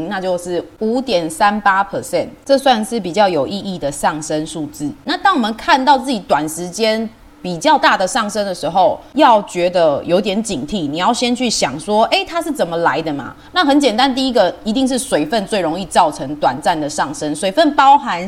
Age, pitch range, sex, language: 20-39, 175-265 Hz, female, Chinese